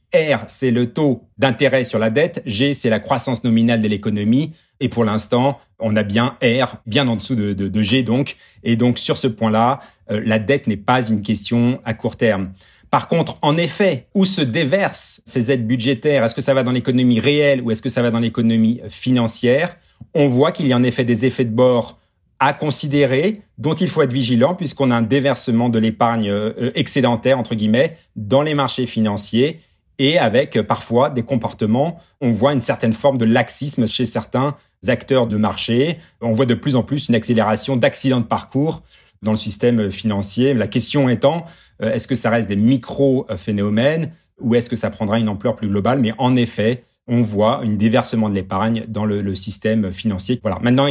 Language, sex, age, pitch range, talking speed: French, male, 40-59, 110-135 Hz, 195 wpm